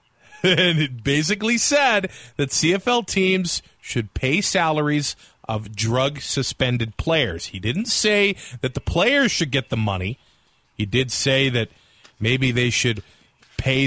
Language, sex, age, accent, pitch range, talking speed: English, male, 30-49, American, 115-170 Hz, 140 wpm